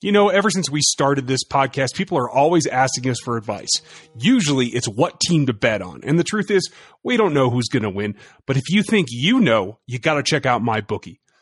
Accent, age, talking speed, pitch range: American, 30-49, 235 wpm, 130-180 Hz